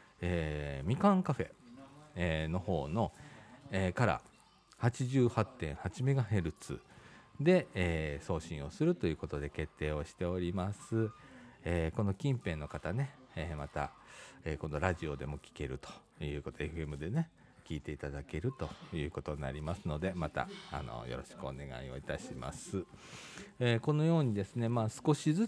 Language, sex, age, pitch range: Japanese, male, 40-59, 80-125 Hz